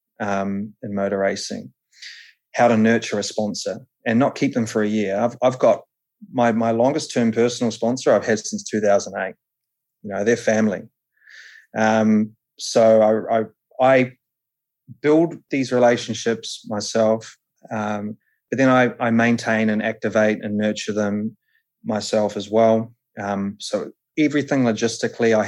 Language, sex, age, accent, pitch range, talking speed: English, male, 20-39, Australian, 110-135 Hz, 140 wpm